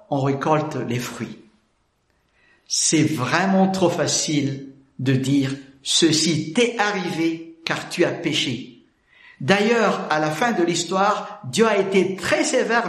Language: French